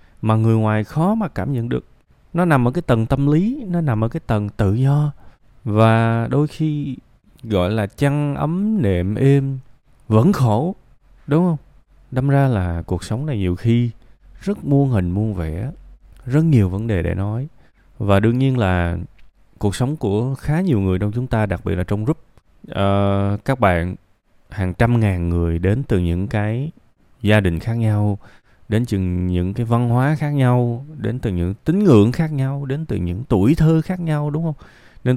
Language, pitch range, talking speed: Vietnamese, 95-135 Hz, 190 wpm